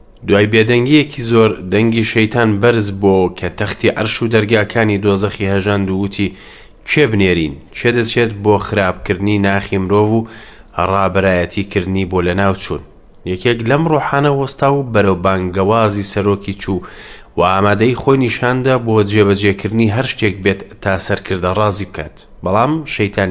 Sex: male